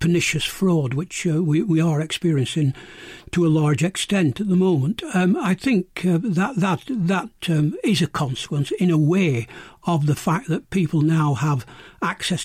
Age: 60-79